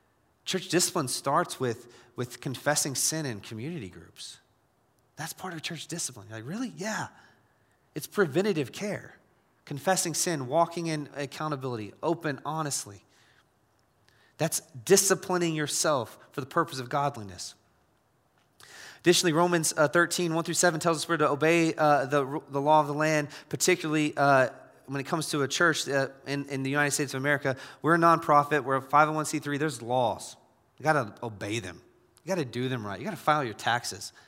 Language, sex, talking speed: English, male, 165 wpm